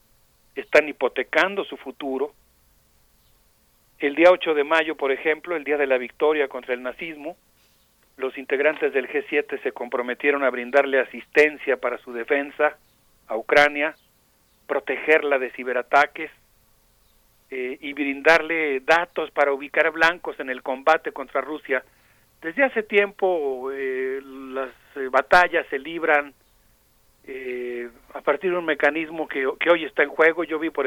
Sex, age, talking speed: male, 40-59, 140 wpm